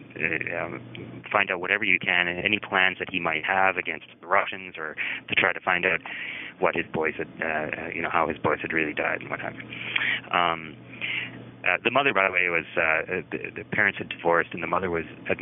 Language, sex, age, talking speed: English, male, 30-49, 215 wpm